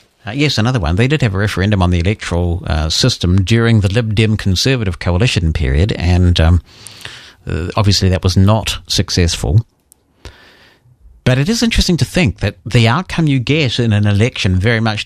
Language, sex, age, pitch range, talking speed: English, male, 50-69, 95-120 Hz, 175 wpm